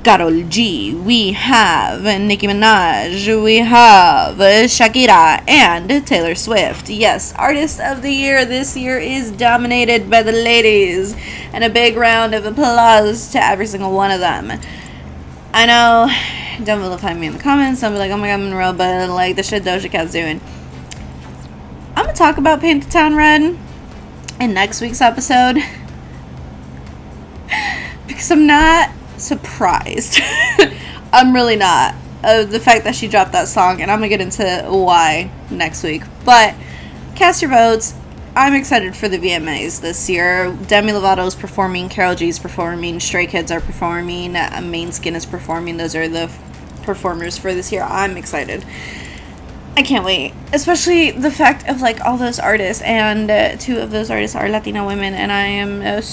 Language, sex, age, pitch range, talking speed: English, female, 20-39, 170-240 Hz, 170 wpm